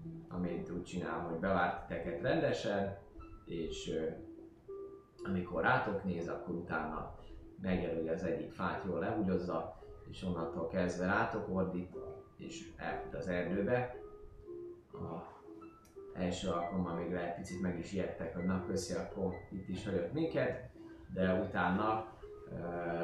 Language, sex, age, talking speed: Hungarian, male, 20-39, 115 wpm